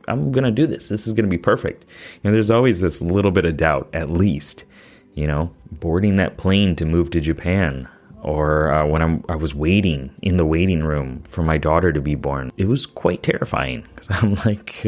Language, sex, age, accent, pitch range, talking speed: English, male, 20-39, American, 80-105 Hz, 215 wpm